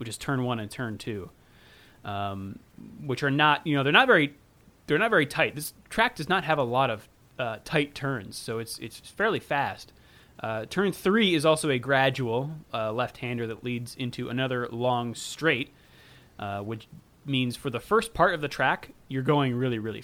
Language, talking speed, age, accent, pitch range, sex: English, 195 wpm, 30-49, American, 120-155 Hz, male